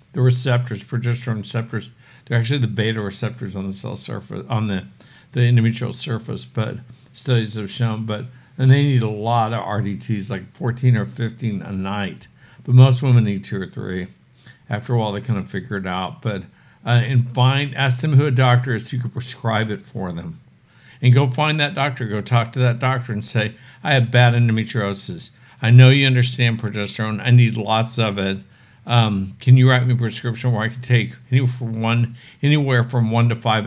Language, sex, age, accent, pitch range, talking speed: English, male, 60-79, American, 110-125 Hz, 200 wpm